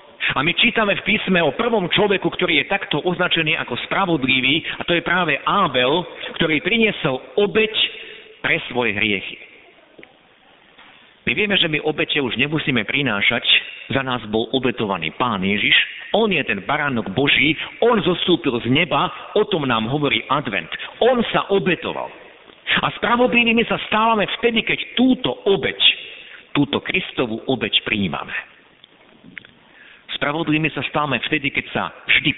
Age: 50-69